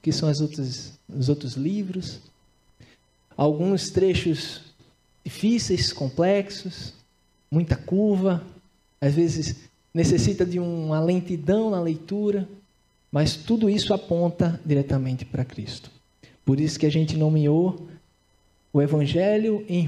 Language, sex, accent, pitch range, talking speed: Portuguese, male, Brazilian, 135-180 Hz, 110 wpm